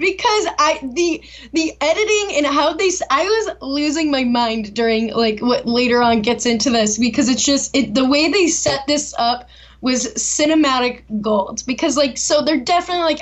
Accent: American